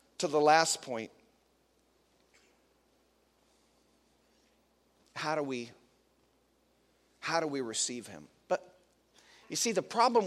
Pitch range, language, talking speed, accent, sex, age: 150-200 Hz, English, 100 wpm, American, male, 40-59